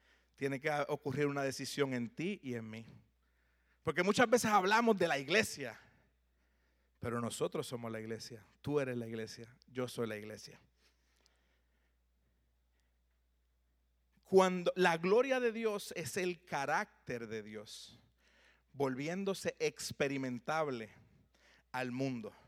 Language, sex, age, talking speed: Spanish, male, 40-59, 115 wpm